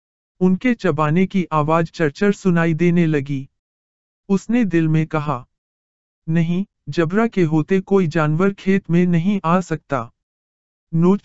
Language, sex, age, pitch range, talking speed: Hindi, male, 50-69, 115-185 Hz, 130 wpm